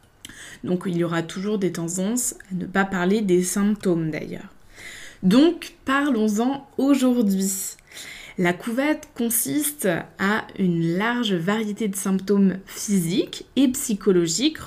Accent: French